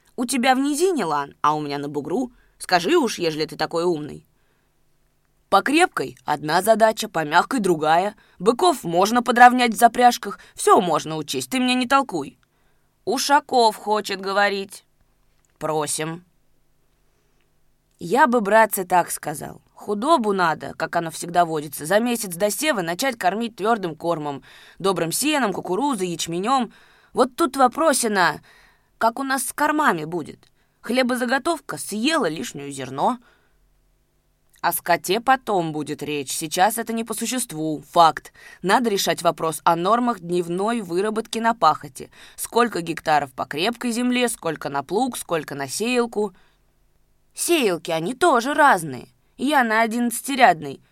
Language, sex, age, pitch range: Russian, female, 20-39, 165-245 Hz